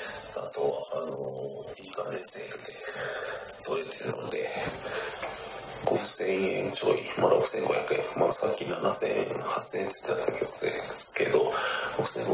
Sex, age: male, 40-59